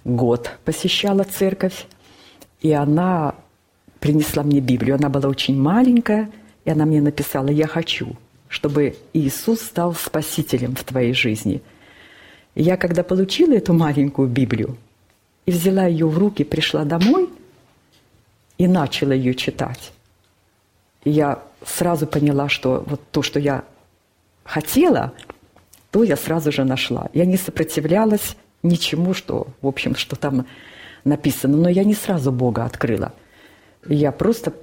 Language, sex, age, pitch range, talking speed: Russian, female, 40-59, 135-175 Hz, 130 wpm